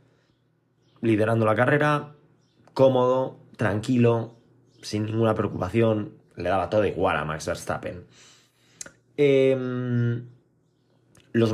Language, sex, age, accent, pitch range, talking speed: Spanish, male, 20-39, Spanish, 110-130 Hz, 90 wpm